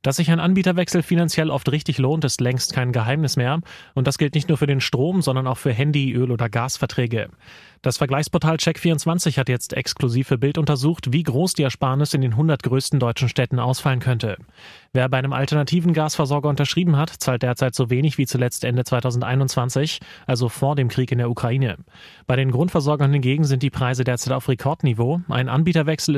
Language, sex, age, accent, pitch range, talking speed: German, male, 30-49, German, 125-150 Hz, 190 wpm